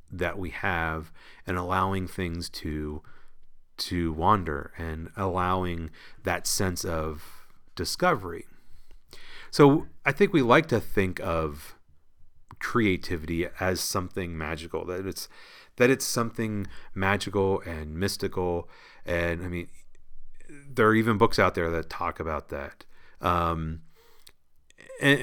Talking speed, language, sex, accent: 120 wpm, English, male, American